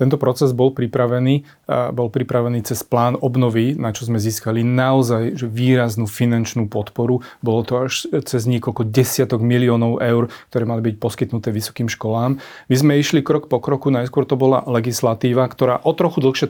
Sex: male